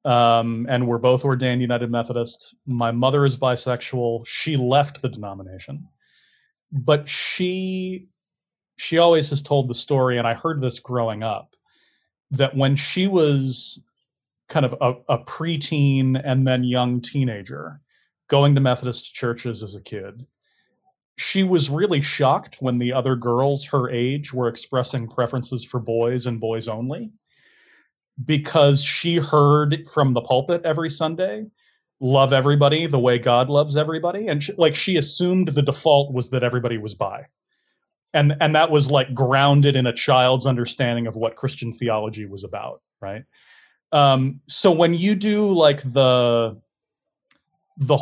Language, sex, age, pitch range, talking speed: English, male, 30-49, 120-150 Hz, 150 wpm